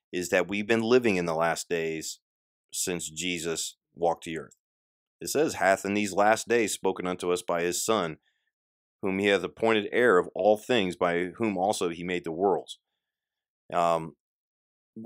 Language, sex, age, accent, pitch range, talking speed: English, male, 30-49, American, 85-105 Hz, 170 wpm